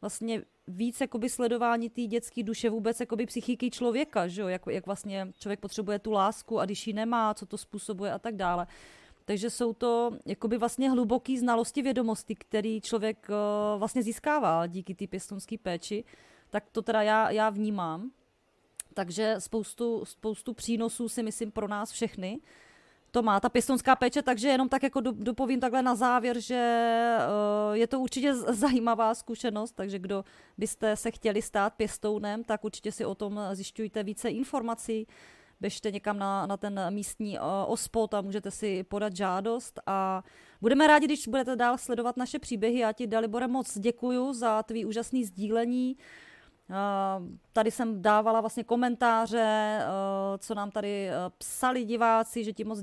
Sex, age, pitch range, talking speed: female, 30-49, 210-245 Hz, 155 wpm